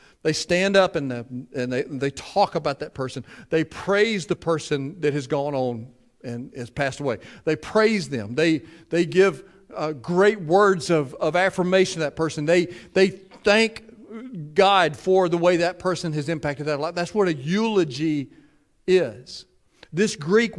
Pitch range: 170-245 Hz